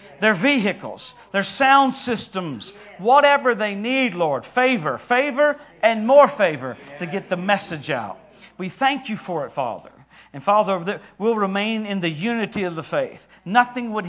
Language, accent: English, American